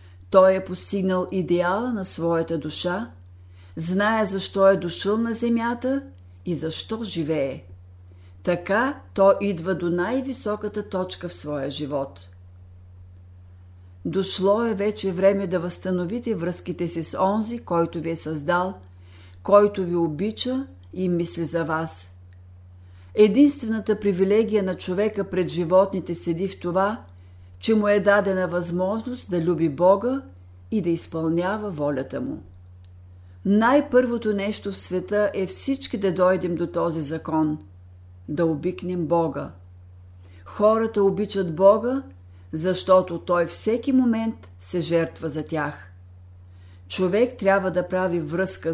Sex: female